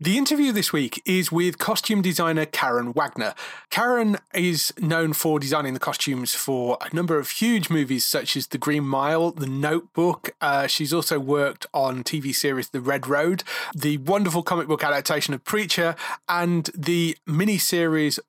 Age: 30-49